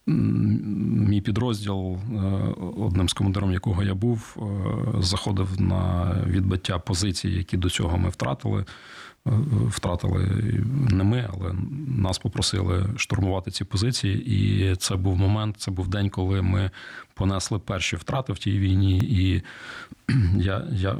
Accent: native